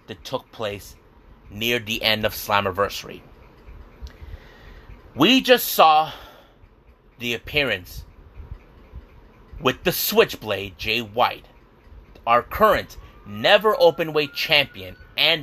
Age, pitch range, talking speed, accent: 30-49, 105-160 Hz, 95 wpm, American